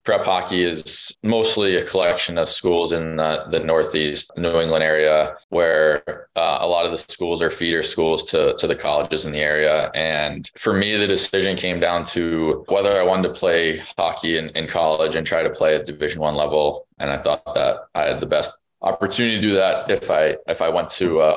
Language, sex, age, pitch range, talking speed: English, male, 20-39, 80-95 Hz, 215 wpm